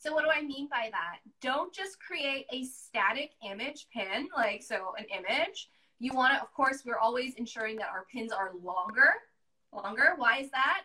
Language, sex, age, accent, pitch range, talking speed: English, female, 20-39, American, 230-285 Hz, 195 wpm